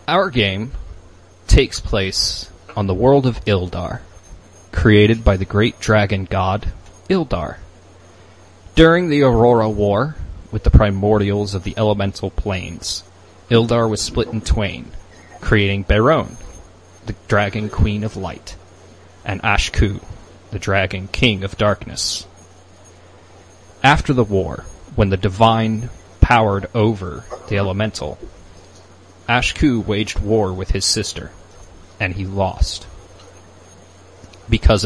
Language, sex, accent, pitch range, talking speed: English, male, American, 90-110 Hz, 115 wpm